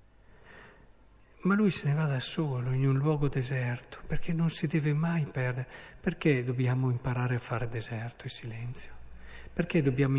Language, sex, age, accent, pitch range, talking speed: Italian, male, 50-69, native, 135-175 Hz, 160 wpm